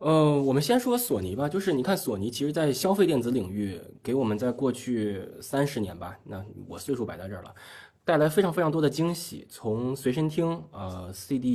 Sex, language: male, Chinese